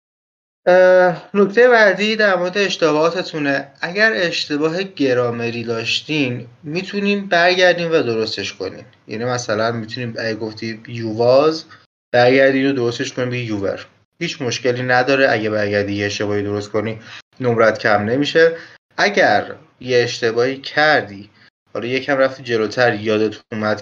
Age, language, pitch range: 30-49, Persian, 115-160 Hz